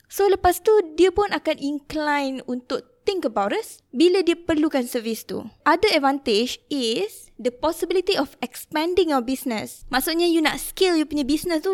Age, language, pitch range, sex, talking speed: 20-39, Malay, 250-345 Hz, female, 170 wpm